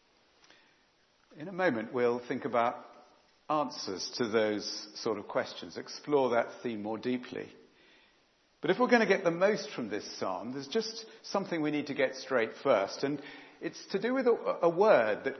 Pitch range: 150-220 Hz